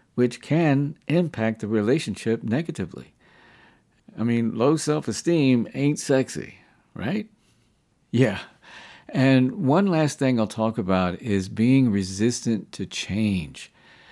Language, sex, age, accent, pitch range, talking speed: English, male, 50-69, American, 100-130 Hz, 110 wpm